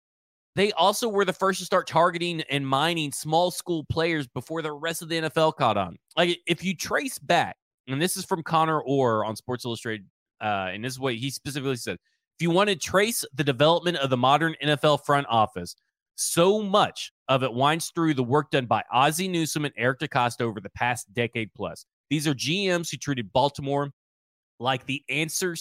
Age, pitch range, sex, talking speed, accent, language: 20-39, 130-170 Hz, male, 200 wpm, American, English